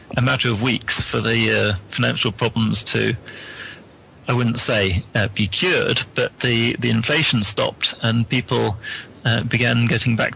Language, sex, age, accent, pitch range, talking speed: English, male, 40-59, British, 110-130 Hz, 155 wpm